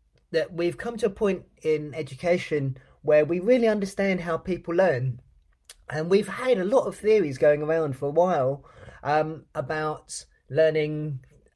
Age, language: 20-39, English